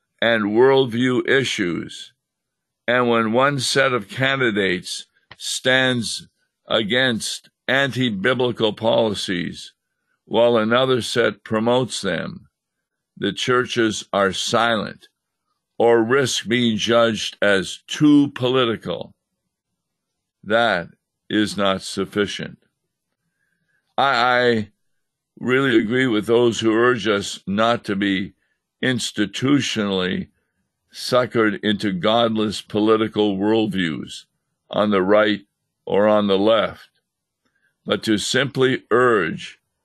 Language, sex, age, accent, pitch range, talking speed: English, male, 60-79, American, 105-125 Hz, 95 wpm